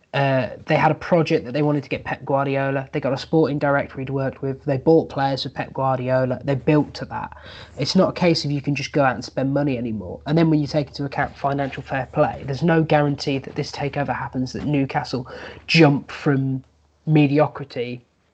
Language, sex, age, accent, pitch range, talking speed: English, male, 20-39, British, 135-155 Hz, 215 wpm